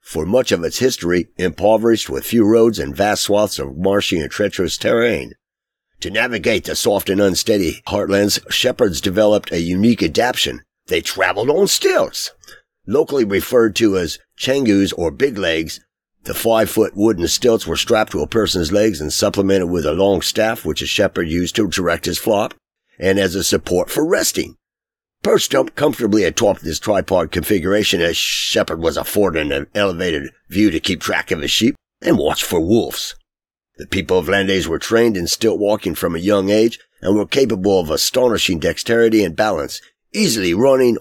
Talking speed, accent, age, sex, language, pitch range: 170 wpm, American, 50-69, male, English, 90-110 Hz